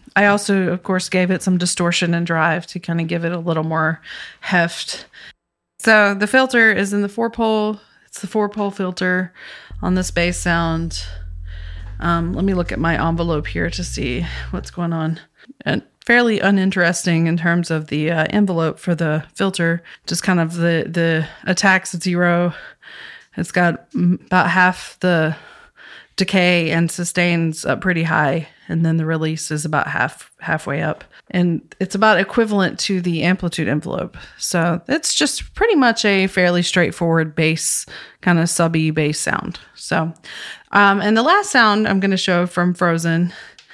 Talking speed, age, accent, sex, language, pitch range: 165 wpm, 30-49, American, female, English, 165-200 Hz